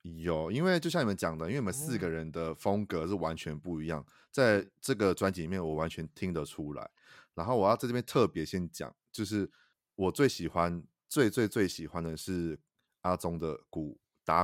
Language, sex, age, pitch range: Chinese, male, 30-49, 80-110 Hz